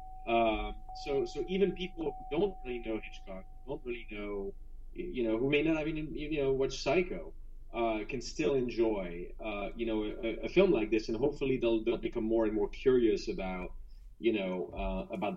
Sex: male